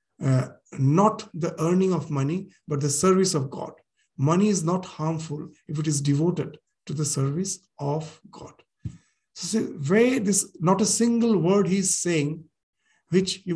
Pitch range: 155-200 Hz